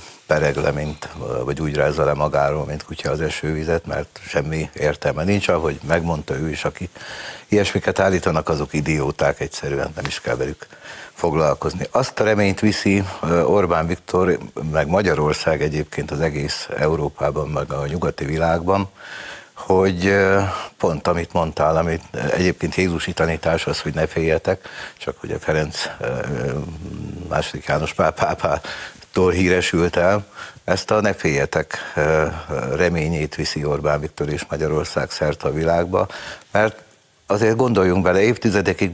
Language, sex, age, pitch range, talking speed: Hungarian, male, 60-79, 75-95 Hz, 135 wpm